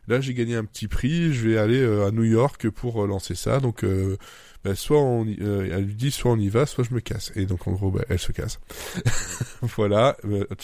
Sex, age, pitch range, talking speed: male, 20-39, 105-125 Hz, 250 wpm